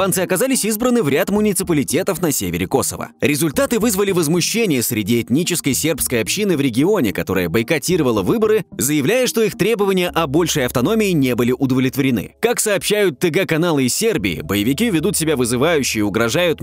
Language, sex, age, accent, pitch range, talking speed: Russian, male, 20-39, native, 135-190 Hz, 145 wpm